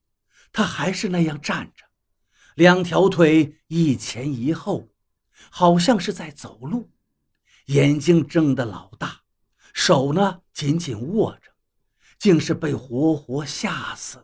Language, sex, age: Chinese, male, 50-69